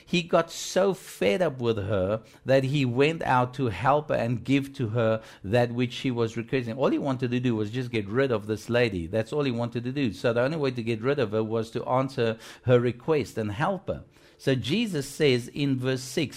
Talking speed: 235 wpm